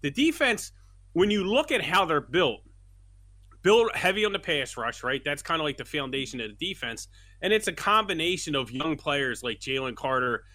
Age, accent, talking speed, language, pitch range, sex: 30-49, American, 200 wpm, English, 120-170 Hz, male